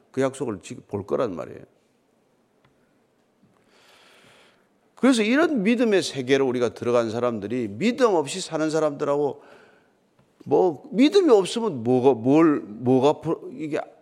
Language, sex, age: Korean, male, 40-59